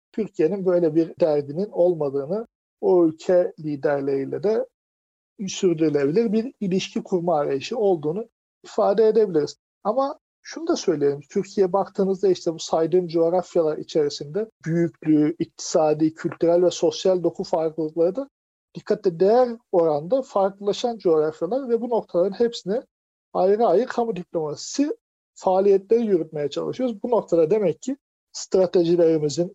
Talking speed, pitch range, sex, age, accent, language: 115 wpm, 150-200 Hz, male, 50-69, Turkish, English